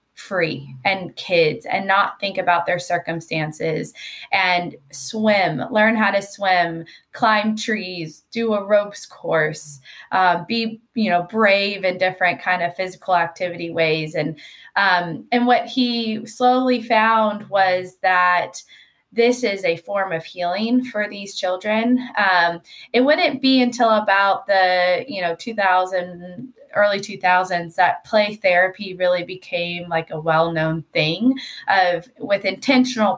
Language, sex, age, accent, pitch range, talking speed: English, female, 20-39, American, 175-220 Hz, 135 wpm